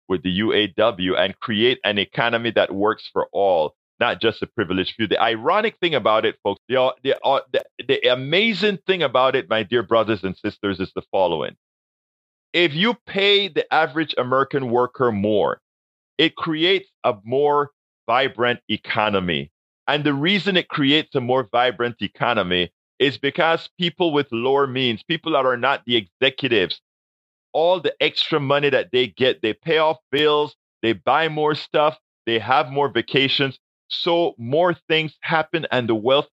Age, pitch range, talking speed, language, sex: 40-59, 115-160 Hz, 165 wpm, English, male